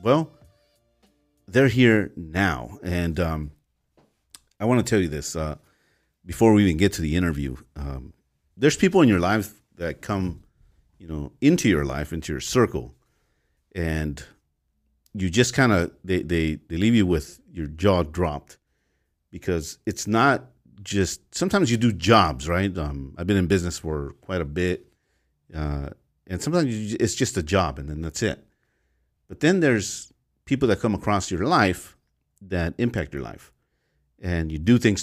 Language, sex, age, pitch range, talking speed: English, male, 50-69, 75-95 Hz, 165 wpm